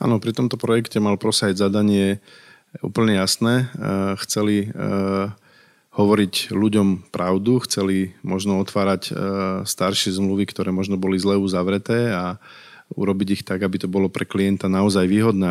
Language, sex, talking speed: Slovak, male, 130 wpm